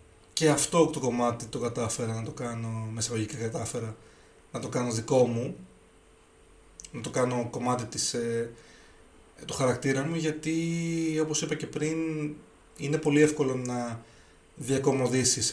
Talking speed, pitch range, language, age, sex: 130 wpm, 115-150 Hz, Greek, 20-39, male